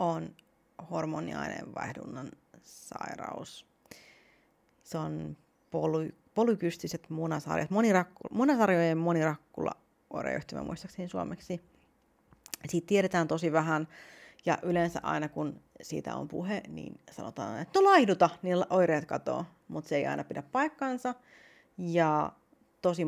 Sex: female